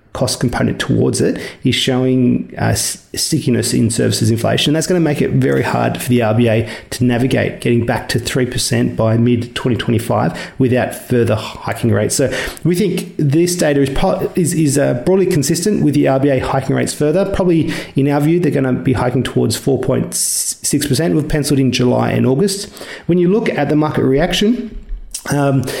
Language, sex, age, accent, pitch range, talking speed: English, male, 40-59, Australian, 120-155 Hz, 175 wpm